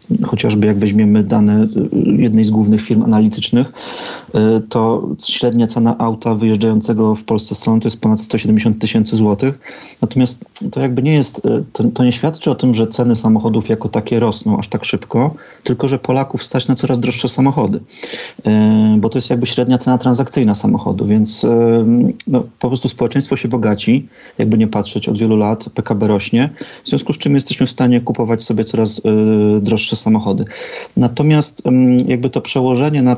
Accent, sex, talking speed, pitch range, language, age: native, male, 160 wpm, 110-125 Hz, Polish, 30-49